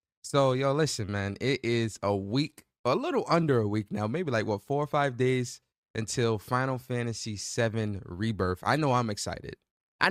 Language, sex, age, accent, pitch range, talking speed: English, male, 20-39, American, 105-135 Hz, 185 wpm